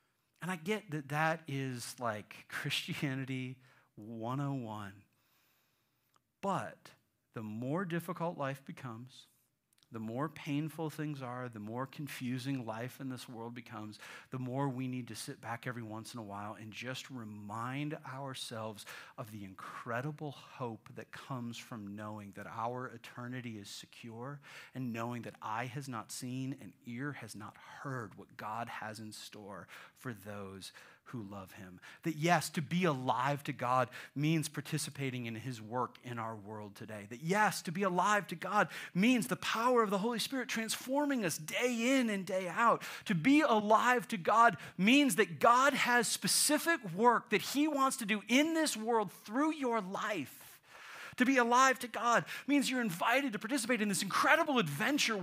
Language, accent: English, American